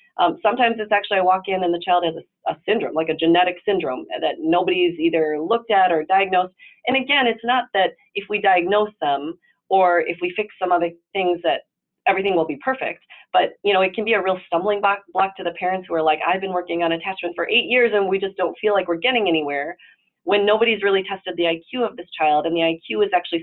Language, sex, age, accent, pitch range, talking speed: English, female, 30-49, American, 165-210 Hz, 240 wpm